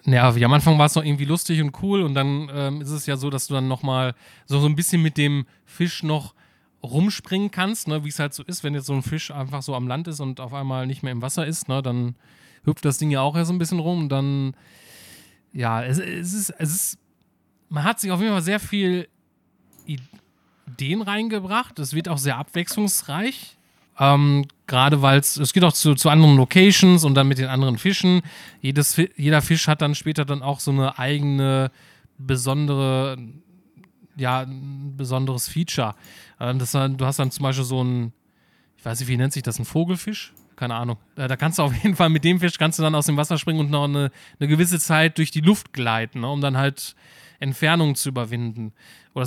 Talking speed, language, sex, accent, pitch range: 220 wpm, German, male, German, 135-160 Hz